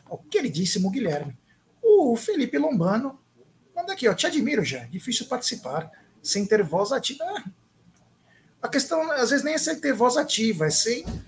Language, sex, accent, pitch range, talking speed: Portuguese, male, Brazilian, 150-235 Hz, 175 wpm